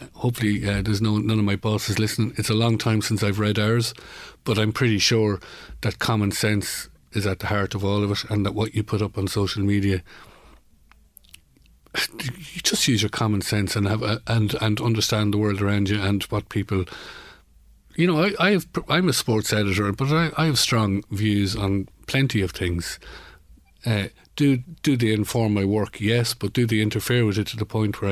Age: 50-69